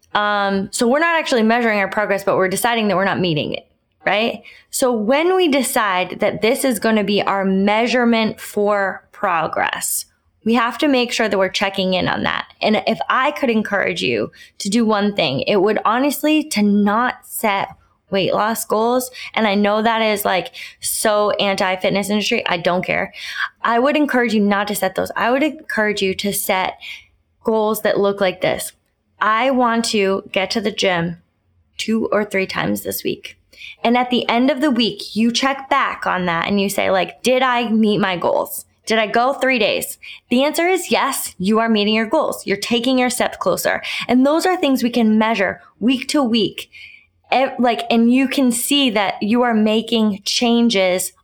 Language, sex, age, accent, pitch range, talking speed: English, female, 10-29, American, 200-245 Hz, 195 wpm